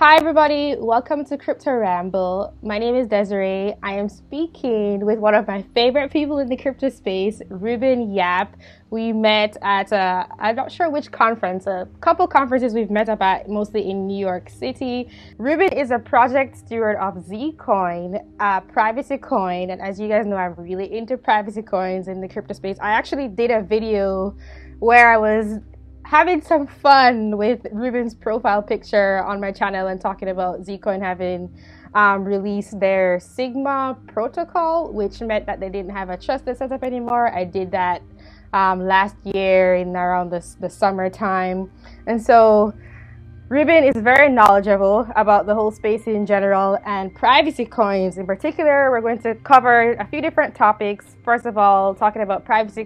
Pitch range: 195-240 Hz